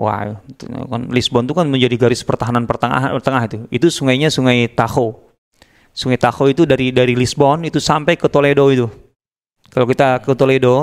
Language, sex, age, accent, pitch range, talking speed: Indonesian, male, 20-39, native, 120-150 Hz, 170 wpm